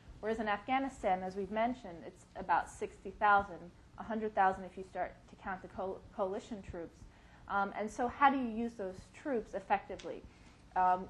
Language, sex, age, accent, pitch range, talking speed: English, female, 30-49, American, 185-215 Hz, 160 wpm